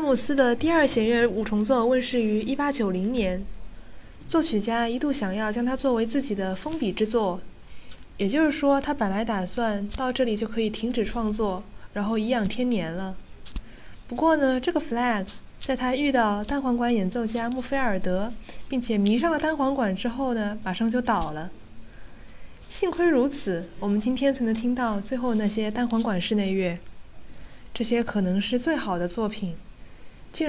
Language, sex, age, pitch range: Chinese, female, 10-29, 190-260 Hz